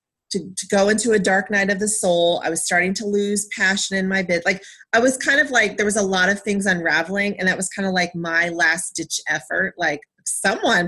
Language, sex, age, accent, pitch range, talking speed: English, female, 30-49, American, 185-235 Hz, 245 wpm